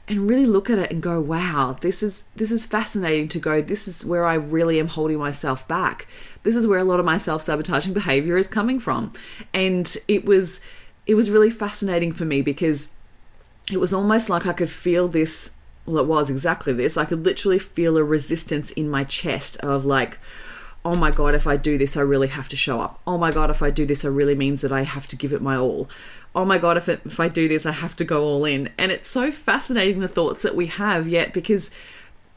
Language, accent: English, Australian